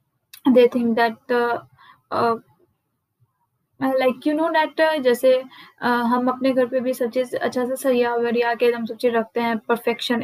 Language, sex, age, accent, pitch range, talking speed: Hindi, female, 10-29, native, 230-255 Hz, 135 wpm